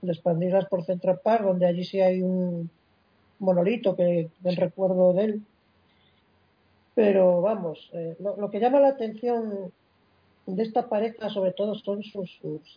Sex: female